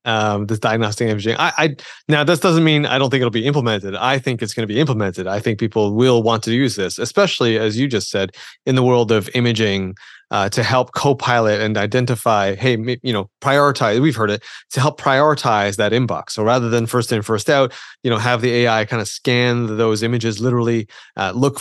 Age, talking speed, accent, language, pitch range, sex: 30-49, 220 wpm, American, English, 115-140 Hz, male